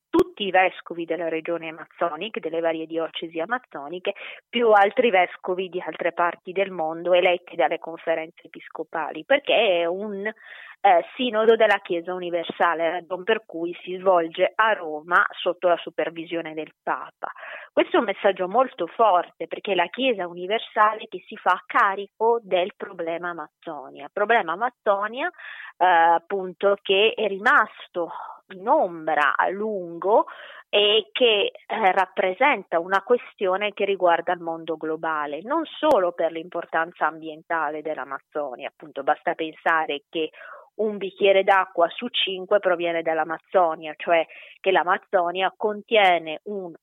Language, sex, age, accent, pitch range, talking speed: Italian, female, 20-39, native, 165-205 Hz, 130 wpm